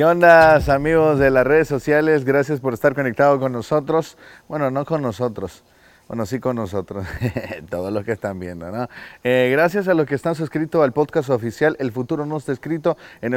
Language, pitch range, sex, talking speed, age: Spanish, 110-150 Hz, male, 195 wpm, 30-49